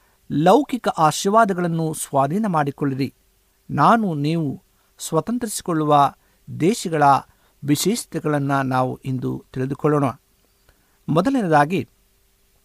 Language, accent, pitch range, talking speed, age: Kannada, native, 130-185 Hz, 60 wpm, 60-79